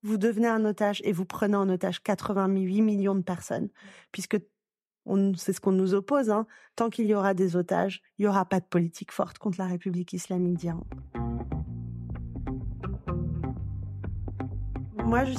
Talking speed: 155 wpm